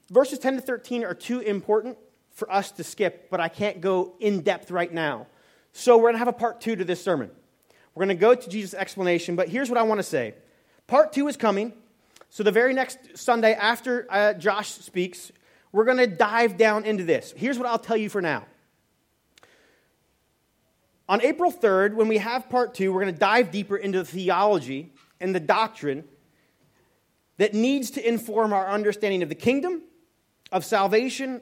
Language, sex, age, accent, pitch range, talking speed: English, male, 30-49, American, 185-235 Hz, 195 wpm